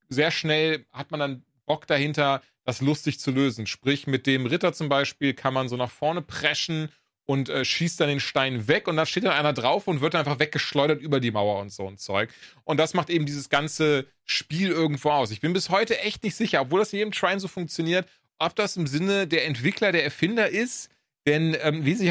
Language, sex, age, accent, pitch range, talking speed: English, male, 30-49, German, 135-175 Hz, 225 wpm